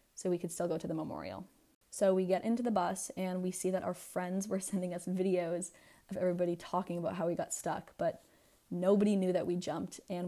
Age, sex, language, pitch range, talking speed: 20-39, female, English, 175-195 Hz, 230 wpm